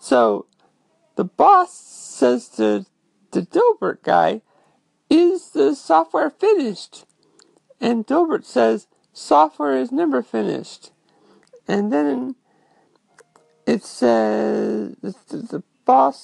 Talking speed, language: 90 wpm, English